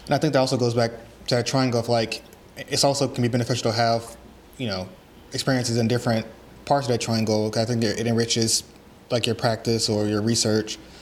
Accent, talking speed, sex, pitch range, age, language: American, 205 wpm, male, 115-125 Hz, 20-39, English